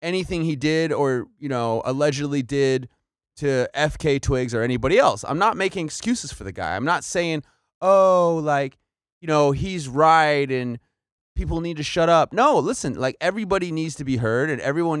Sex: male